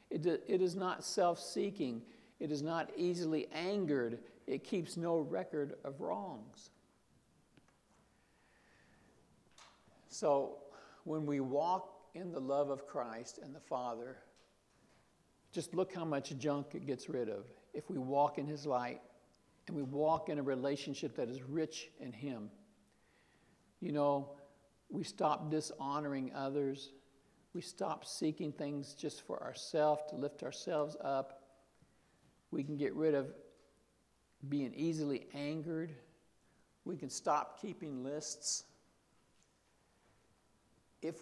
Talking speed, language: 120 wpm, English